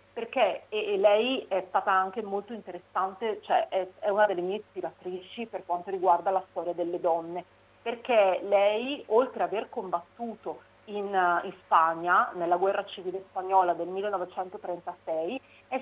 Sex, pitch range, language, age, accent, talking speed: female, 175-230 Hz, Italian, 40-59, native, 135 wpm